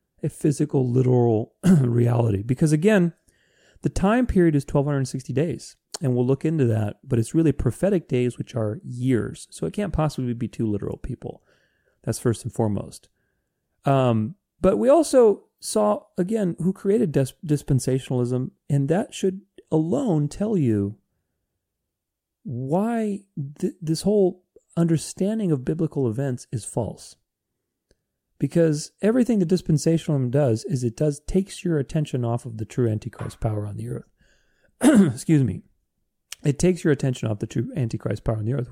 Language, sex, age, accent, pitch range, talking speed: English, male, 40-59, American, 125-180 Hz, 145 wpm